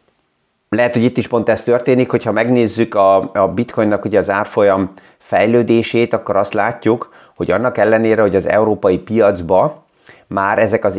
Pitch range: 95-115 Hz